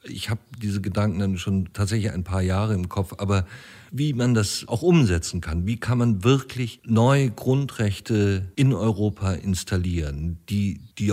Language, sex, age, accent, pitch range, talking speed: German, male, 50-69, German, 95-110 Hz, 160 wpm